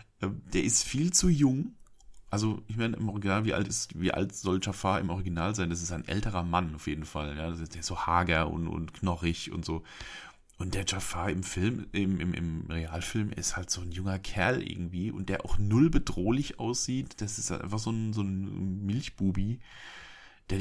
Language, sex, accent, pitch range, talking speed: German, male, German, 85-110 Hz, 185 wpm